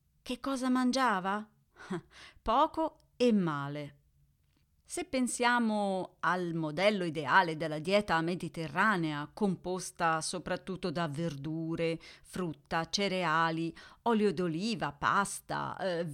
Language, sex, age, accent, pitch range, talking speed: Italian, female, 40-59, native, 160-220 Hz, 90 wpm